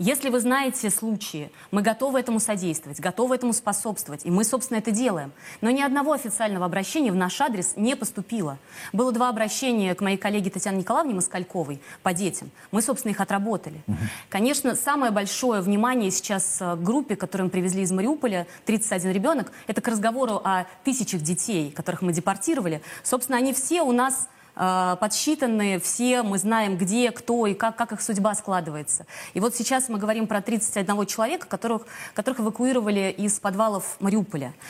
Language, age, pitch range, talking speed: Russian, 20-39, 185-235 Hz, 165 wpm